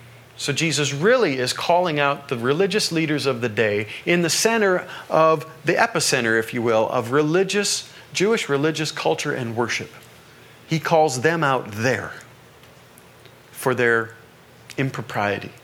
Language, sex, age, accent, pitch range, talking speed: English, male, 40-59, American, 115-145 Hz, 140 wpm